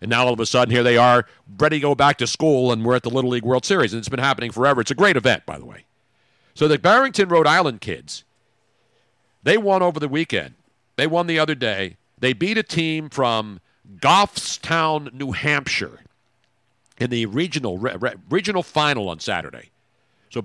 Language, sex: English, male